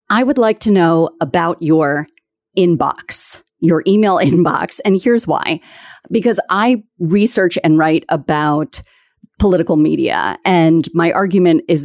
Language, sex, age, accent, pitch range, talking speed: English, female, 40-59, American, 165-215 Hz, 130 wpm